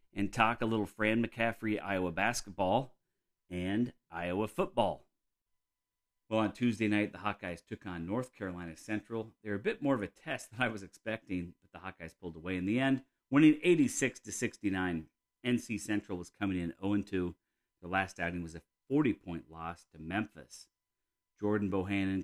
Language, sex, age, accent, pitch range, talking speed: English, male, 40-59, American, 90-110 Hz, 165 wpm